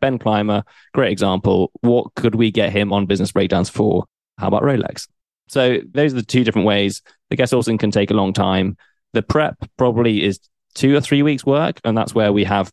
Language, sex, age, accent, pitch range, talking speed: English, male, 20-39, British, 100-110 Hz, 210 wpm